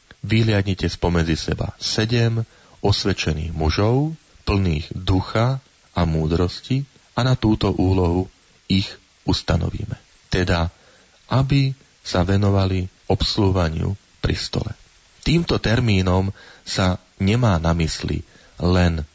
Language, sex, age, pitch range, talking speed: Slovak, male, 40-59, 85-110 Hz, 90 wpm